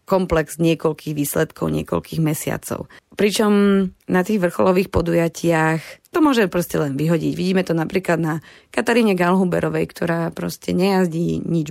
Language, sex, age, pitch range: Slovak, female, 30-49, 155-175 Hz